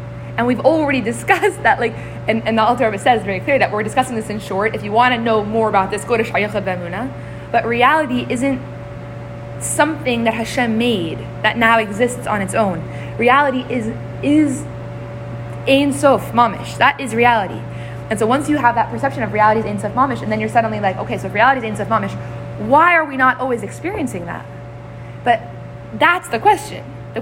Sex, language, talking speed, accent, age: female, English, 200 wpm, American, 20-39